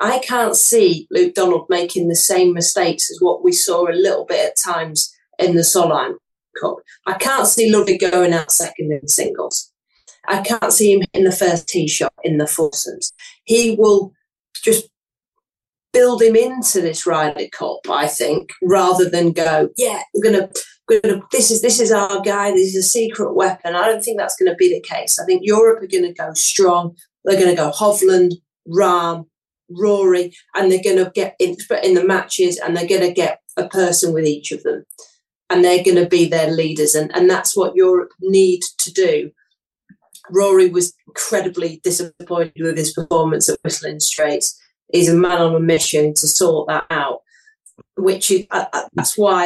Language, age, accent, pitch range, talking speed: English, 40-59, British, 170-225 Hz, 190 wpm